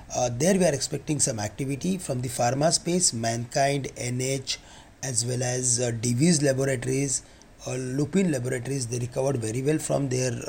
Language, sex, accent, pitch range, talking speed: English, male, Indian, 120-145 Hz, 160 wpm